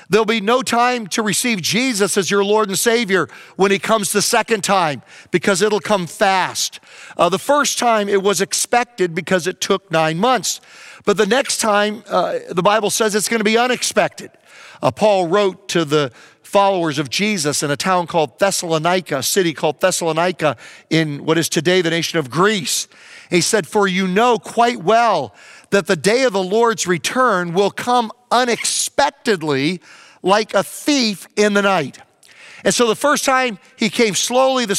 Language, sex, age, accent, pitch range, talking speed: English, male, 50-69, American, 180-230 Hz, 180 wpm